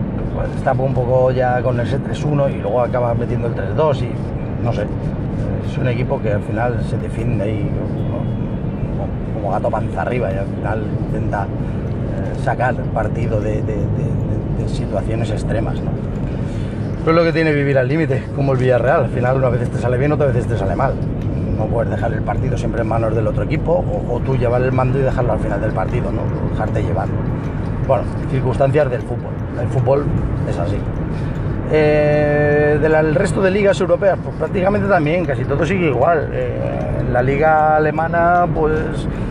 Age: 30-49